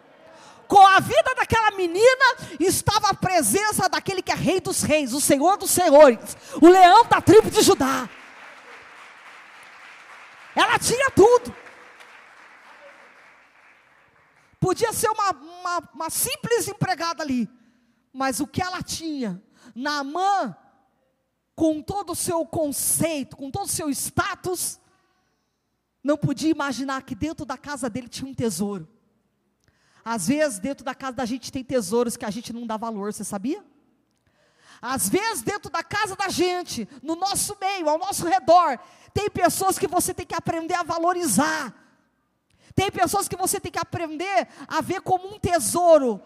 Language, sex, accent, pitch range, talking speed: Portuguese, female, Brazilian, 270-370 Hz, 145 wpm